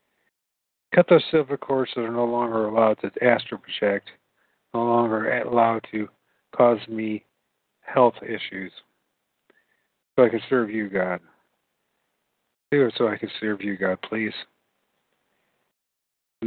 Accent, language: American, English